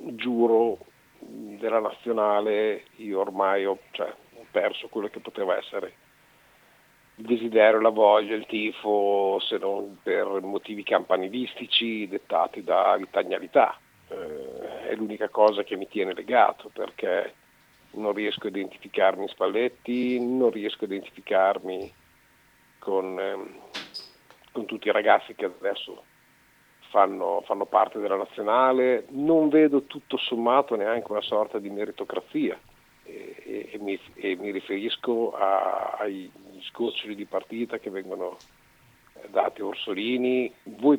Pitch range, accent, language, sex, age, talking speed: 105-125 Hz, native, Italian, male, 50-69, 125 wpm